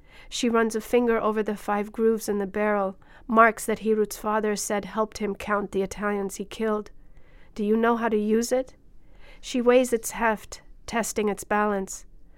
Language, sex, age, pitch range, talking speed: English, female, 40-59, 205-225 Hz, 180 wpm